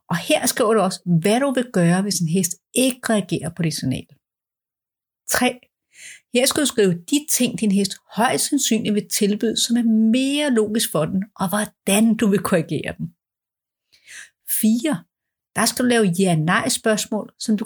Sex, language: female, Danish